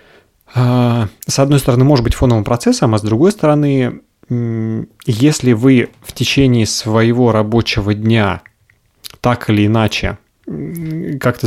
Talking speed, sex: 115 wpm, male